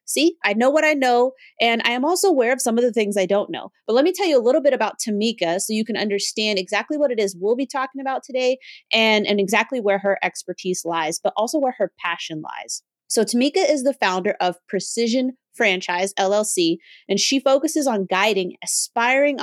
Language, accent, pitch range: English, American, 200-270 Hz